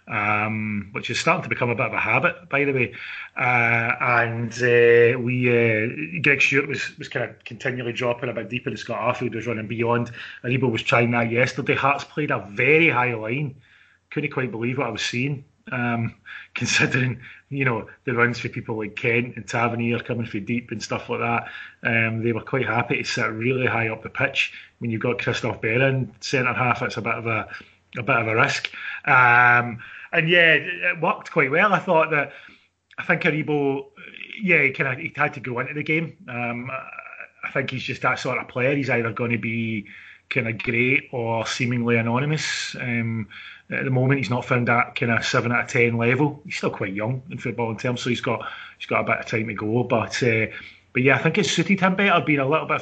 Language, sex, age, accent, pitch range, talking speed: English, male, 30-49, British, 115-140 Hz, 220 wpm